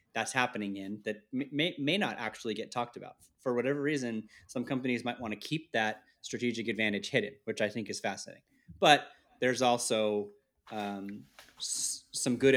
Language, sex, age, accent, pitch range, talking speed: English, male, 30-49, American, 105-125 Hz, 170 wpm